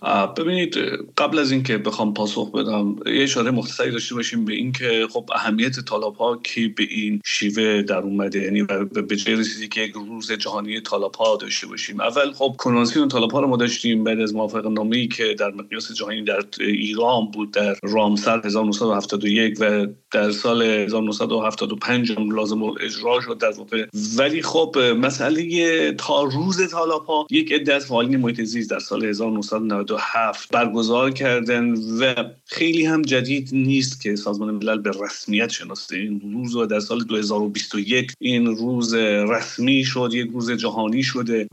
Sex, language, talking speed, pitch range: male, English, 155 wpm, 110-130 Hz